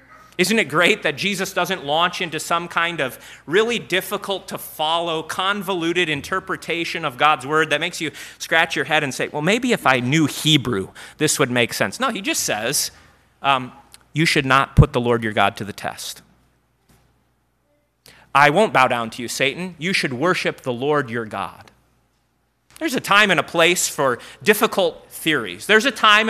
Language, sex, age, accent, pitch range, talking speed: English, male, 30-49, American, 140-185 Hz, 185 wpm